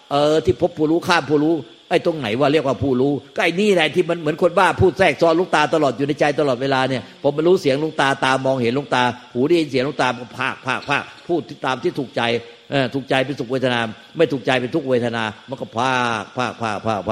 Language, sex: Thai, male